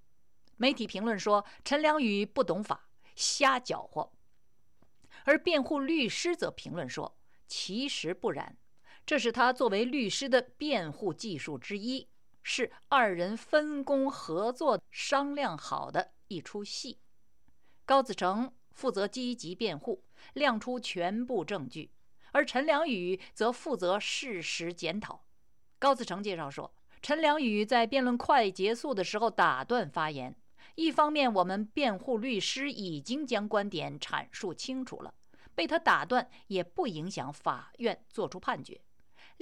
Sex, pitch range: female, 195-275 Hz